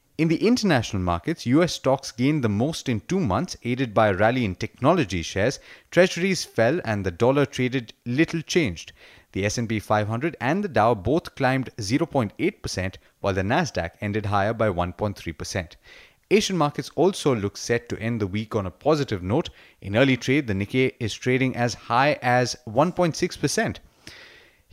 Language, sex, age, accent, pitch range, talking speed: English, male, 30-49, Indian, 105-145 Hz, 165 wpm